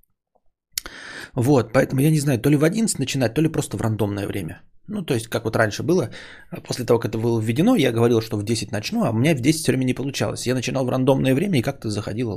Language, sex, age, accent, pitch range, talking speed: Russian, male, 20-39, native, 105-130 Hz, 250 wpm